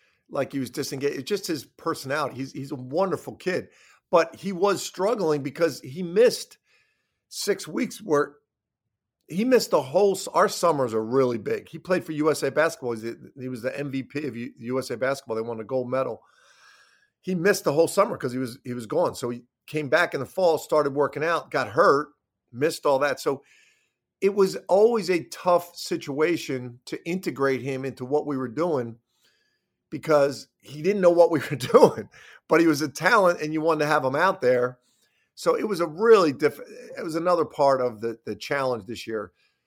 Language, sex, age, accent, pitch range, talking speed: English, male, 50-69, American, 125-175 Hz, 200 wpm